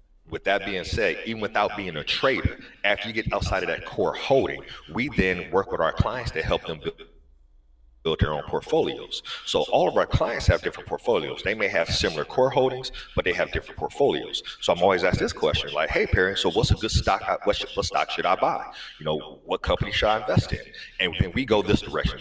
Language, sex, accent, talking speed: English, male, American, 230 wpm